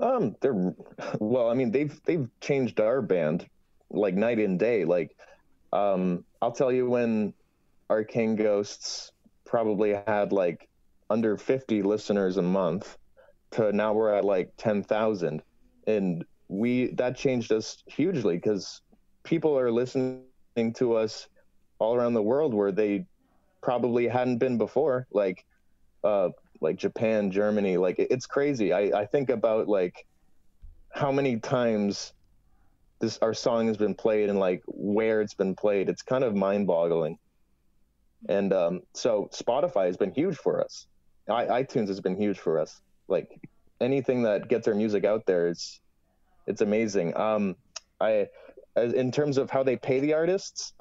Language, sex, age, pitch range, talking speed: English, male, 20-39, 100-125 Hz, 150 wpm